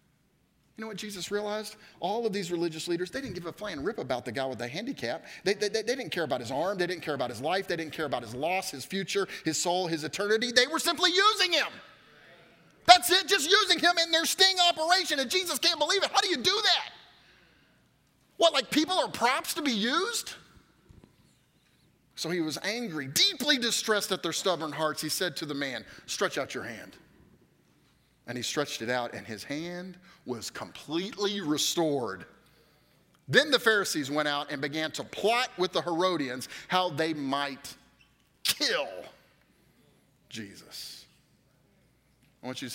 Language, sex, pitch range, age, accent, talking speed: English, male, 140-235 Hz, 30-49, American, 185 wpm